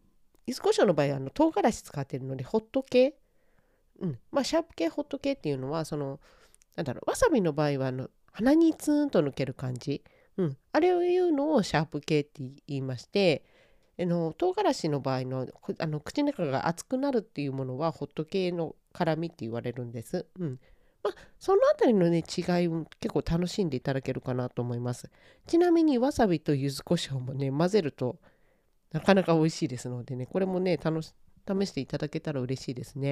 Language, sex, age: Japanese, female, 40-59